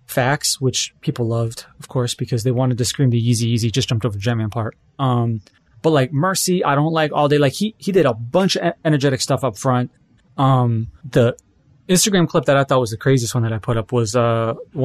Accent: American